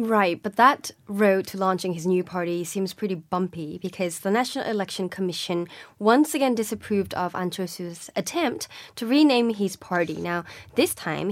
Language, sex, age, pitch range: Korean, female, 20-39, 180-220 Hz